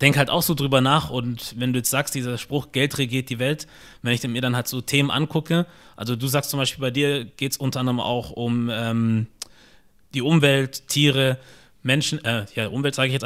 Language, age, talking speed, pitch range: German, 20-39, 220 wpm, 125-150 Hz